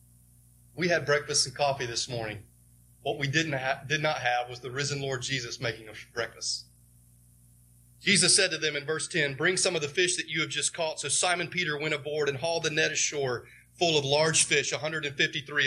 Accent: American